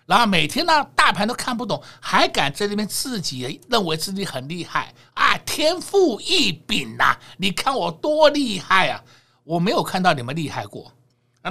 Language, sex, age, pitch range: Chinese, male, 60-79, 135-210 Hz